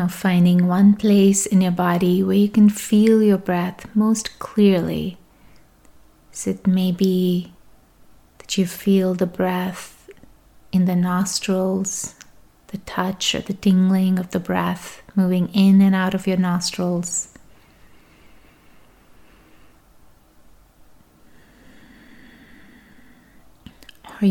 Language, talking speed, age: English, 105 wpm, 30-49